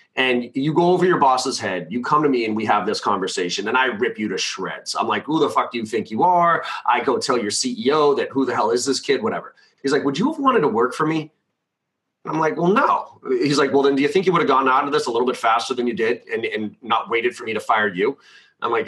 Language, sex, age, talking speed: English, male, 30-49, 290 wpm